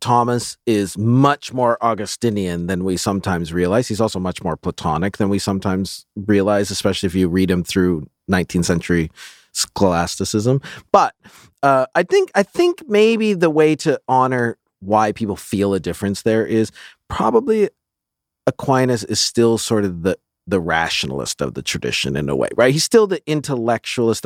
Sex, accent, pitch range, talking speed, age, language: male, American, 95-140 Hz, 160 wpm, 40-59, English